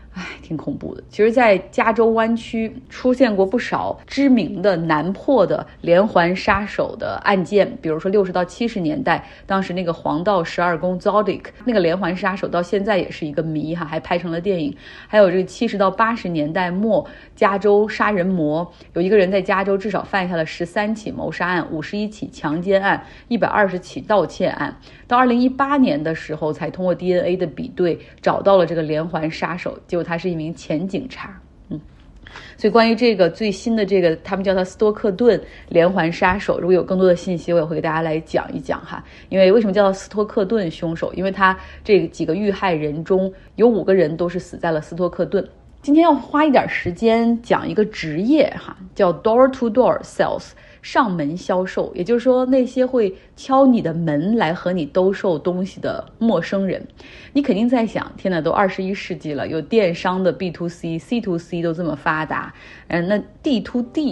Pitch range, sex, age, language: 170-225 Hz, female, 30-49, Chinese